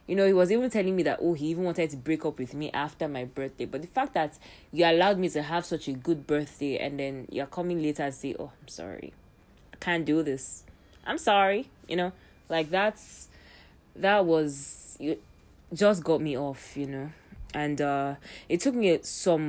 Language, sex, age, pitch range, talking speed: English, female, 20-39, 140-185 Hz, 210 wpm